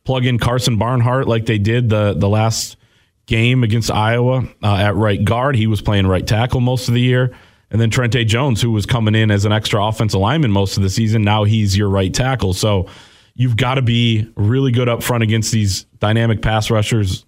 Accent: American